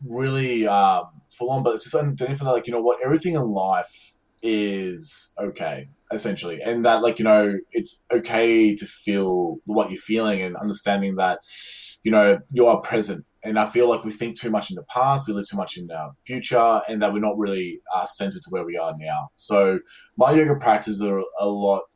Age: 20-39